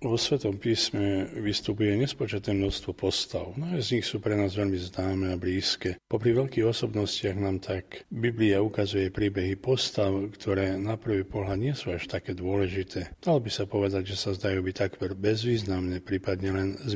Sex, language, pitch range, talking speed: male, Slovak, 95-115 Hz, 175 wpm